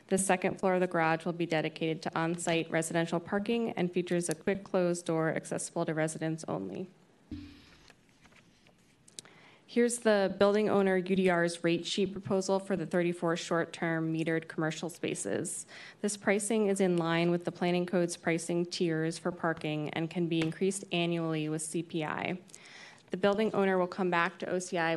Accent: American